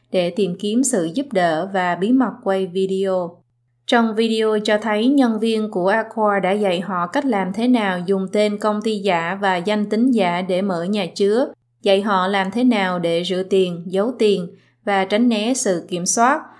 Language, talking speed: Vietnamese, 200 wpm